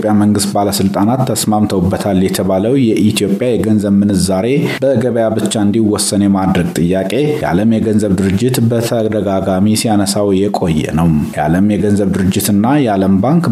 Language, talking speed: Amharic, 105 wpm